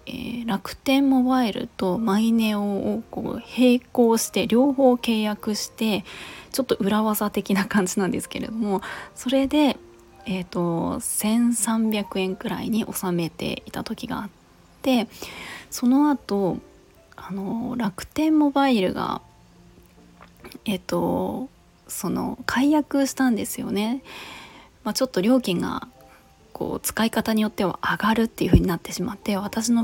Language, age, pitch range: Japanese, 20-39, 185-240 Hz